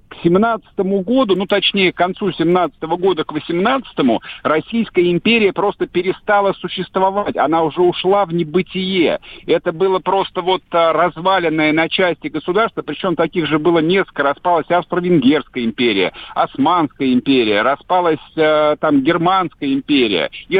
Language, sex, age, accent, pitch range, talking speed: Russian, male, 50-69, native, 170-205 Hz, 135 wpm